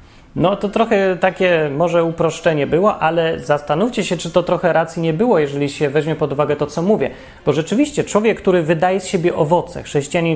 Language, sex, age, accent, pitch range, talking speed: Polish, male, 30-49, native, 140-185 Hz, 190 wpm